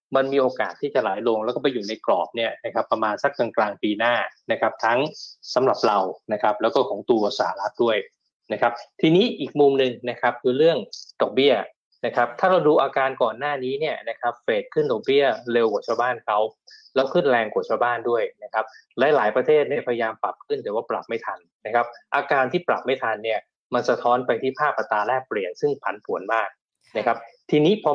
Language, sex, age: Thai, male, 20-39